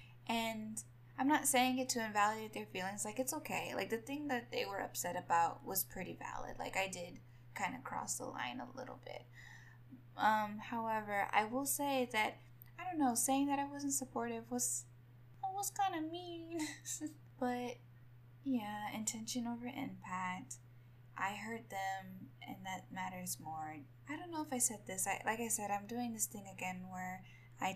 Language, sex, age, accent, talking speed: English, female, 10-29, American, 180 wpm